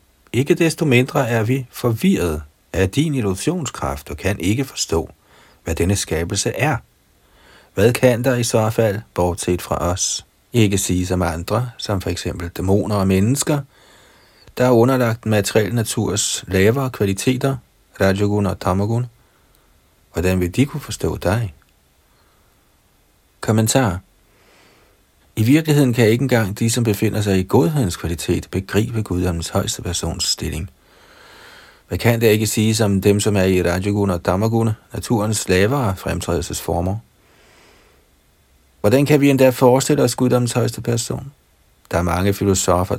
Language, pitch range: Danish, 90-115 Hz